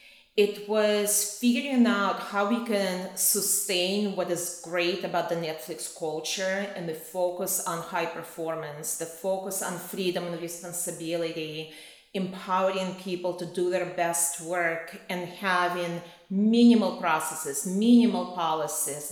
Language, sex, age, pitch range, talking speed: English, female, 30-49, 170-200 Hz, 125 wpm